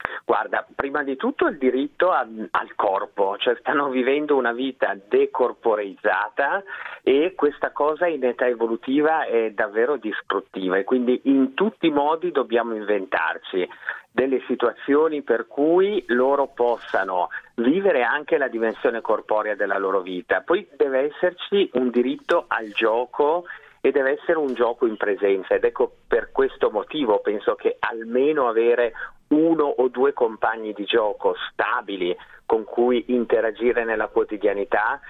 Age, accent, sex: 50-69, native, male